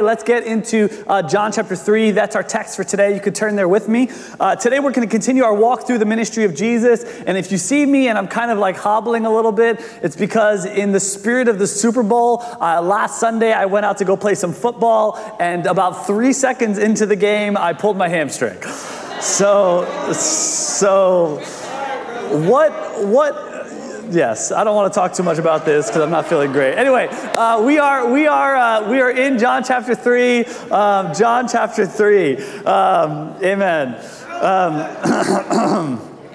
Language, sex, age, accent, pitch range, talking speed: English, male, 30-49, American, 195-230 Hz, 190 wpm